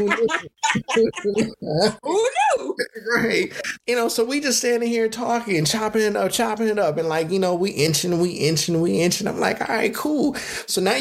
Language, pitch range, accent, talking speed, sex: English, 140-220 Hz, American, 170 wpm, male